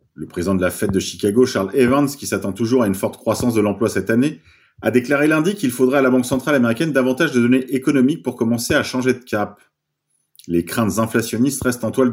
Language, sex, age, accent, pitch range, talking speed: French, male, 30-49, French, 105-135 Hz, 230 wpm